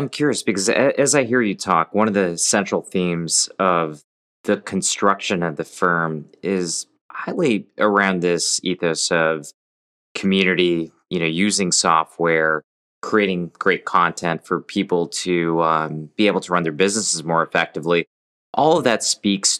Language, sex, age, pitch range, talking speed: English, male, 20-39, 80-95 Hz, 150 wpm